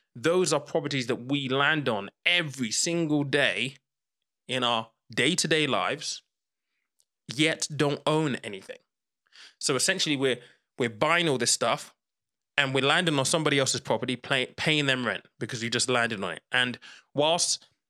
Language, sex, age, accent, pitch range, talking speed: English, male, 20-39, British, 125-160 Hz, 150 wpm